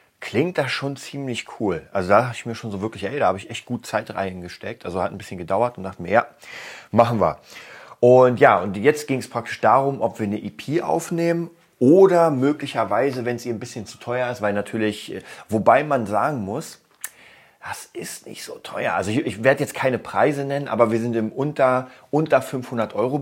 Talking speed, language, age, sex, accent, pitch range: 210 wpm, German, 30-49, male, German, 105-130 Hz